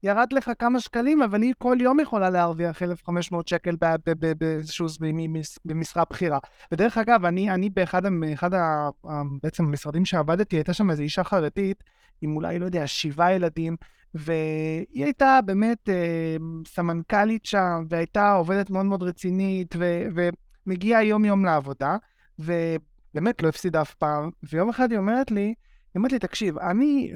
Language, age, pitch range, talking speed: Hebrew, 20-39, 165-230 Hz, 160 wpm